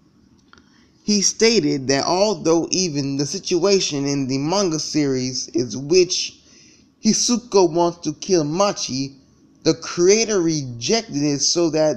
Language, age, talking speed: English, 10-29, 120 wpm